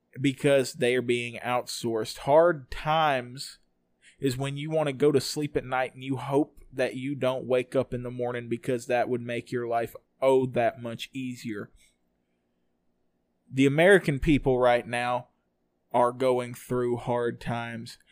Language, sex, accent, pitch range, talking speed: English, male, American, 120-140 Hz, 160 wpm